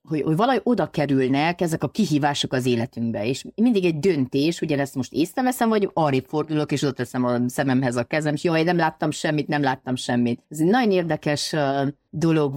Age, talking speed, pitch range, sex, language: 30-49, 195 wpm, 130-170 Hz, female, Hungarian